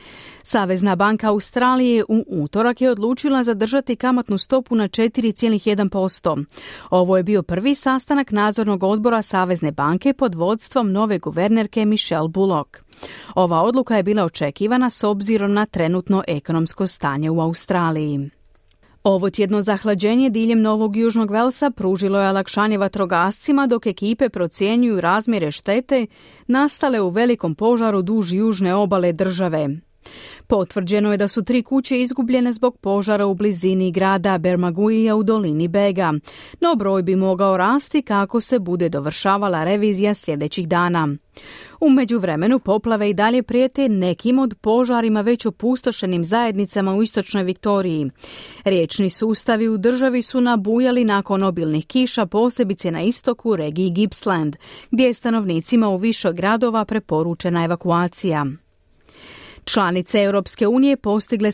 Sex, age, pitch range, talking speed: female, 30-49, 185-235 Hz, 130 wpm